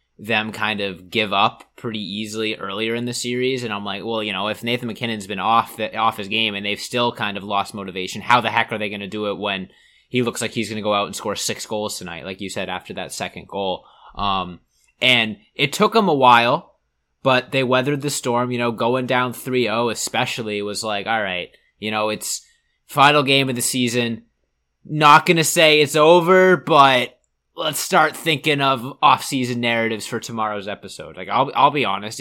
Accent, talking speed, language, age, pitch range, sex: American, 210 wpm, English, 20-39, 105-130 Hz, male